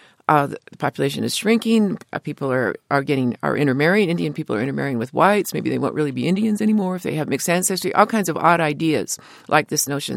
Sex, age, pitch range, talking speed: female, 50-69, 150-200 Hz, 230 wpm